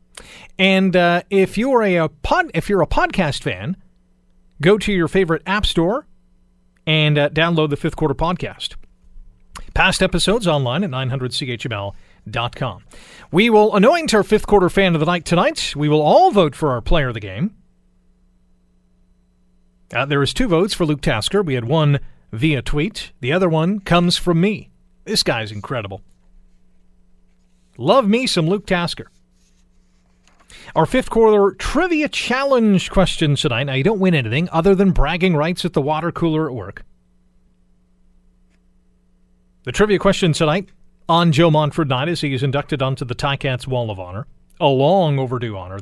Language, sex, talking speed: English, male, 160 wpm